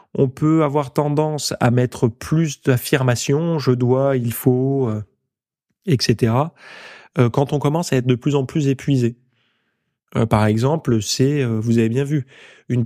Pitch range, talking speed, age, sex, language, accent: 120-145 Hz, 165 wpm, 20-39, male, French, French